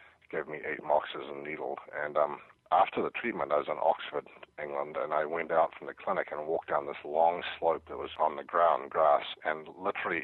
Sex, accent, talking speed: male, American, 215 wpm